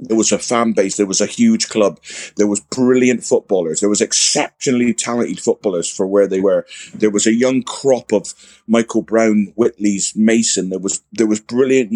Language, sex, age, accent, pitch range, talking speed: English, male, 30-49, British, 95-120 Hz, 190 wpm